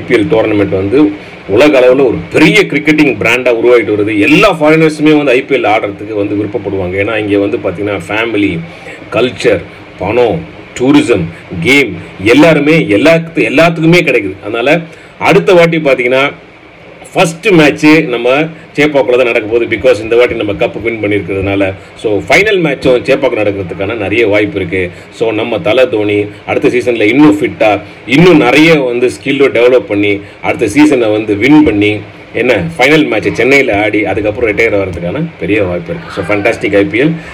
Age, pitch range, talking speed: 30-49, 100-155 Hz, 145 wpm